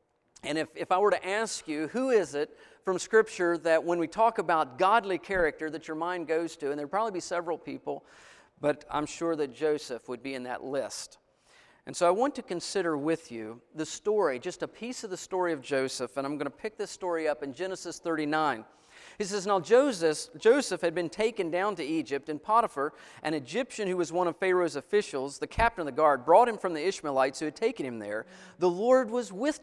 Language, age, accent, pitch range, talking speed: English, 40-59, American, 150-215 Hz, 225 wpm